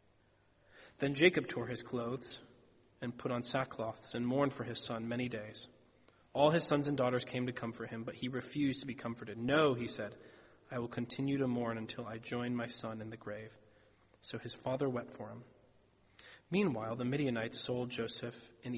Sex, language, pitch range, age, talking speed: male, English, 115-195 Hz, 30-49, 190 wpm